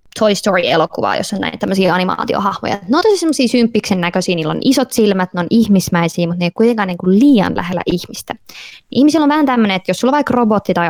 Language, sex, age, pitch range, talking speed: Finnish, female, 20-39, 180-225 Hz, 215 wpm